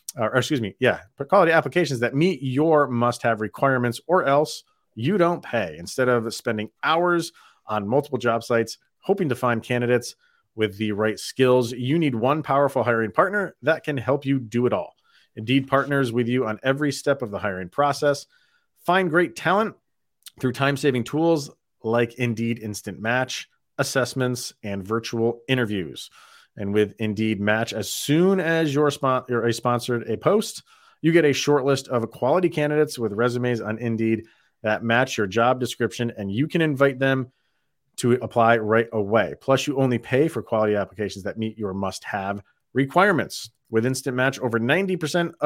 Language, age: English, 30-49